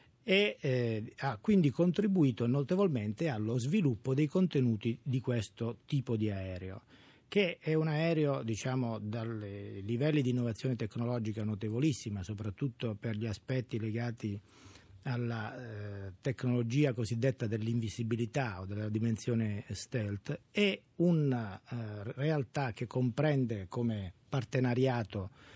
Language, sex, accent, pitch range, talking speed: Italian, male, native, 110-140 Hz, 110 wpm